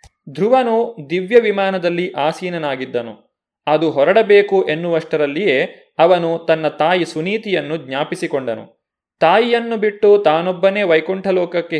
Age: 20-39